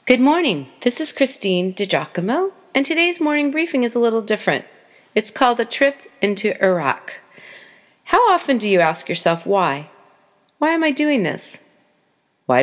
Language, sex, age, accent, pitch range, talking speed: English, female, 40-59, American, 175-265 Hz, 155 wpm